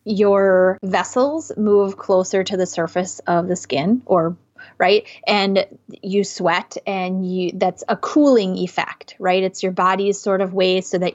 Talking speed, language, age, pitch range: 160 wpm, English, 30-49, 185-220 Hz